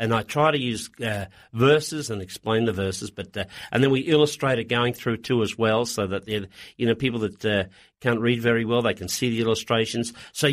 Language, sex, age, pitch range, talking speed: English, male, 50-69, 110-150 Hz, 230 wpm